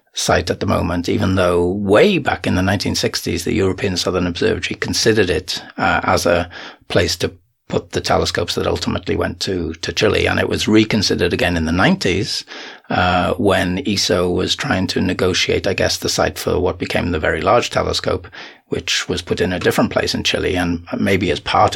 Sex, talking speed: male, 195 wpm